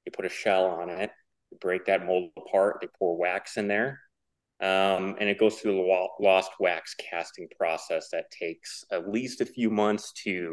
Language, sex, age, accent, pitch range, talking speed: English, male, 30-49, American, 95-115 Hz, 195 wpm